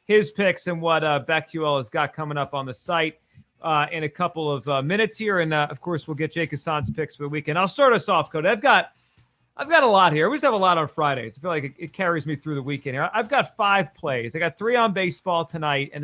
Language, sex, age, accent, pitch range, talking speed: English, male, 30-49, American, 145-200 Hz, 275 wpm